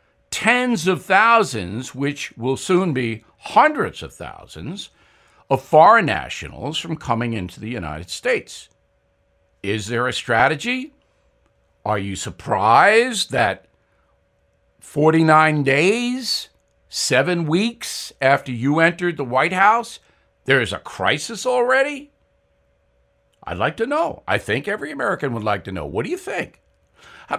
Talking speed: 130 wpm